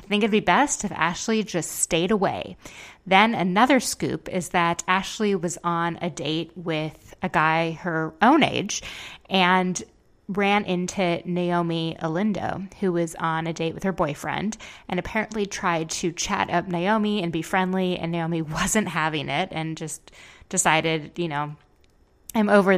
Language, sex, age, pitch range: English, female, 20-39, 165-200 Hz